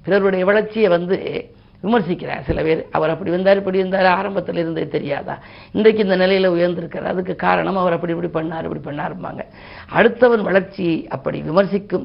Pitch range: 165-195 Hz